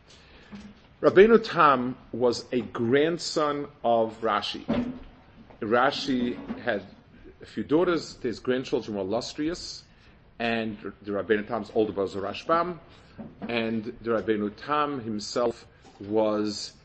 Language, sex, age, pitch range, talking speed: English, male, 40-59, 110-135 Hz, 105 wpm